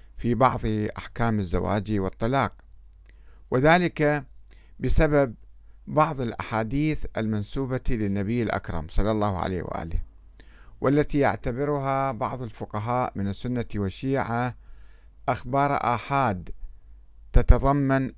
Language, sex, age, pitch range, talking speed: Arabic, male, 50-69, 100-135 Hz, 85 wpm